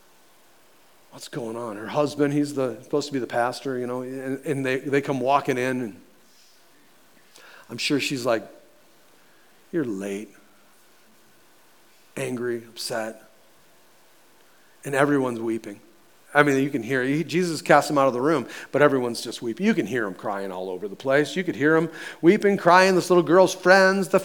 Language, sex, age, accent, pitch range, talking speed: English, male, 40-59, American, 145-200 Hz, 170 wpm